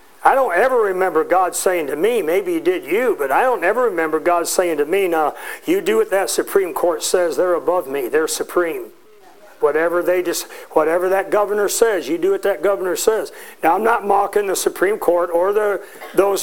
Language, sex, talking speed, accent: English, male, 210 wpm, American